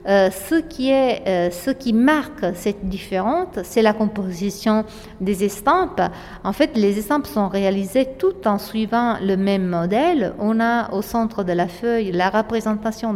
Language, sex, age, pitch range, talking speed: French, female, 50-69, 195-255 Hz, 165 wpm